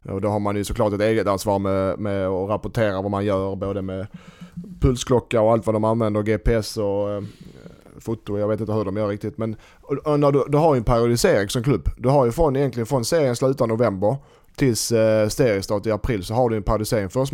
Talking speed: 230 wpm